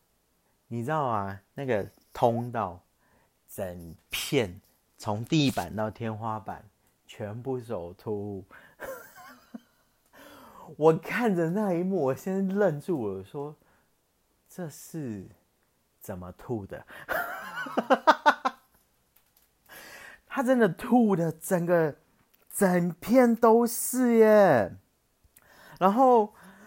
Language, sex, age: Chinese, male, 30-49